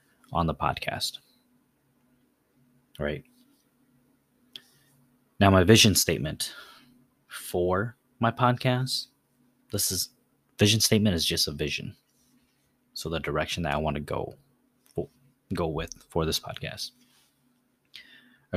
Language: English